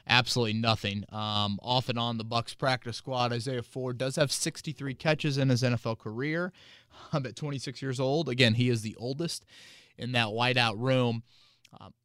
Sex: male